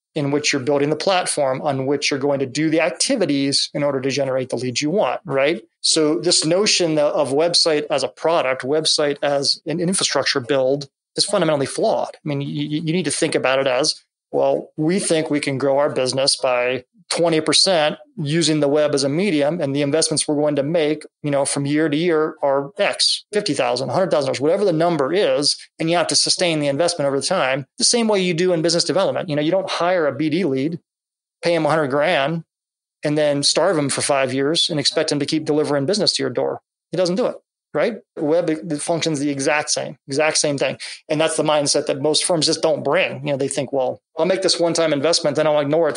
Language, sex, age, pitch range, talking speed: English, male, 30-49, 140-160 Hz, 220 wpm